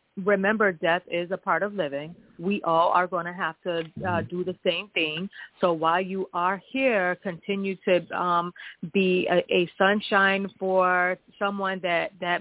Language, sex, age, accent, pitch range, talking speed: English, female, 30-49, American, 165-195 Hz, 170 wpm